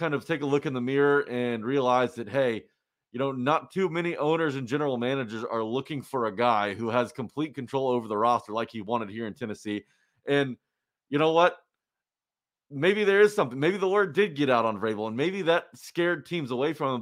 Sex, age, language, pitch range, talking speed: male, 30-49, English, 125-160 Hz, 220 wpm